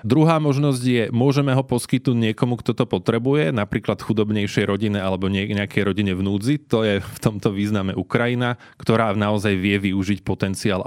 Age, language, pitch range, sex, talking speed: 20-39, Slovak, 105-125 Hz, male, 155 wpm